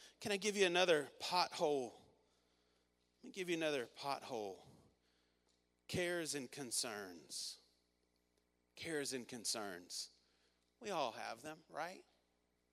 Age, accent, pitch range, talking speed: 40-59, American, 135-200 Hz, 110 wpm